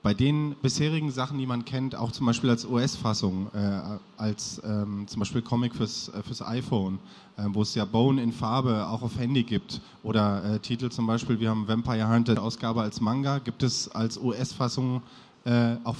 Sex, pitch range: male, 115-135 Hz